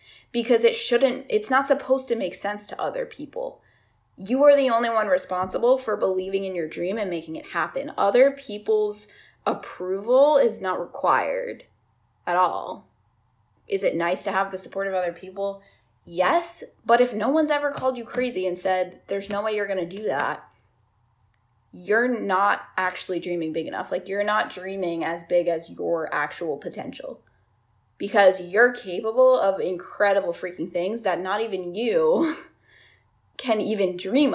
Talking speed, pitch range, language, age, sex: 165 wpm, 185-245 Hz, English, 10-29, female